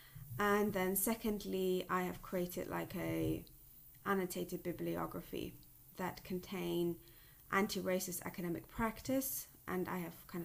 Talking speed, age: 110 wpm, 20-39